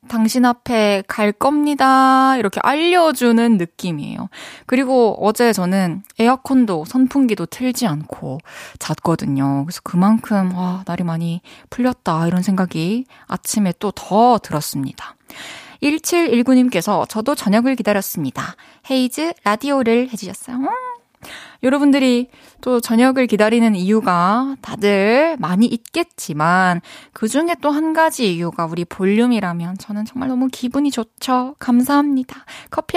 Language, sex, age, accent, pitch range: Korean, female, 20-39, native, 200-280 Hz